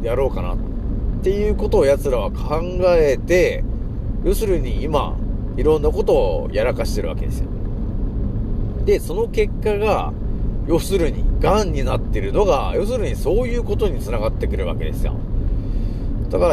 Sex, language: male, Japanese